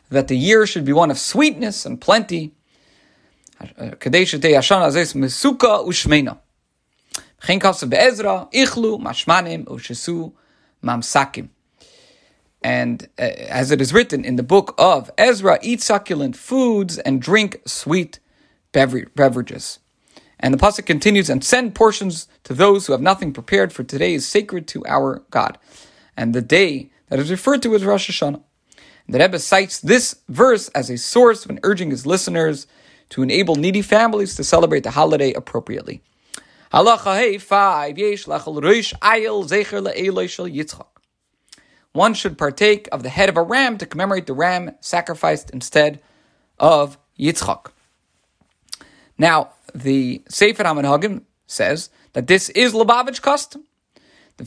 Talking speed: 120 wpm